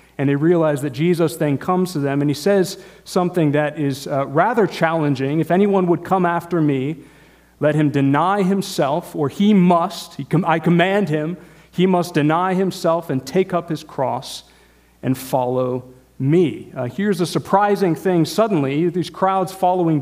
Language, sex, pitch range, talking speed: English, male, 145-185 Hz, 165 wpm